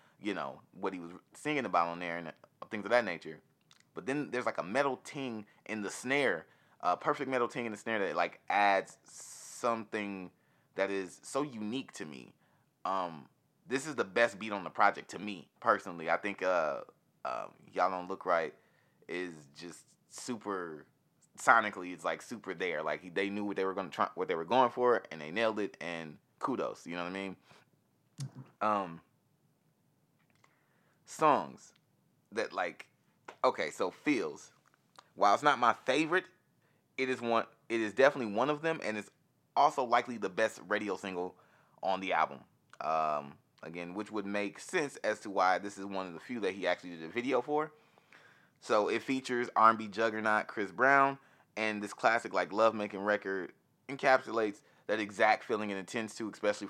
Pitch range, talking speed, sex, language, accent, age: 95-125 Hz, 185 wpm, male, English, American, 20-39